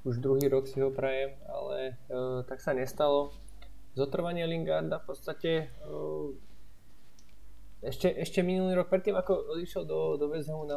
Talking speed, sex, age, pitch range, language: 150 wpm, male, 20-39, 140-155 Hz, Slovak